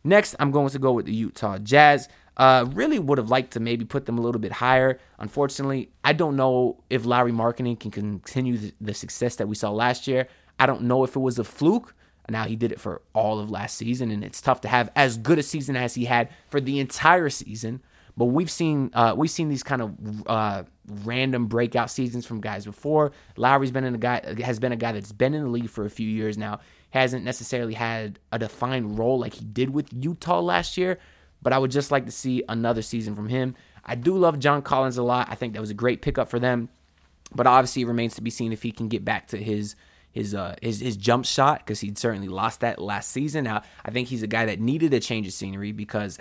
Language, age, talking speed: English, 20-39, 245 wpm